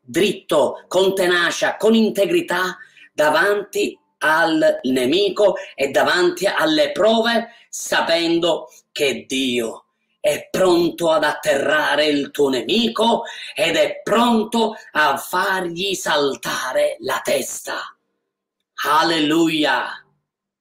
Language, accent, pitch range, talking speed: Italian, native, 165-230 Hz, 90 wpm